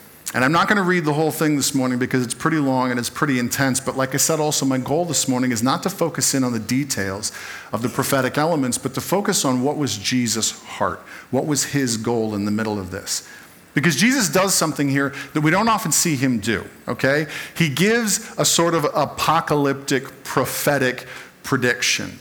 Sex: male